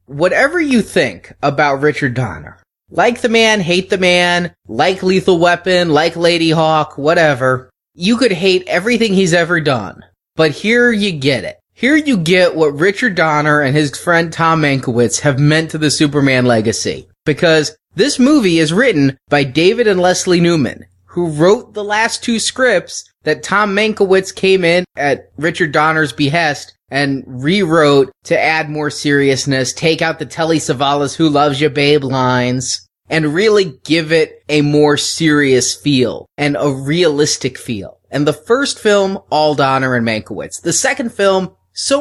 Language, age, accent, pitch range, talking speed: English, 20-39, American, 140-185 Hz, 160 wpm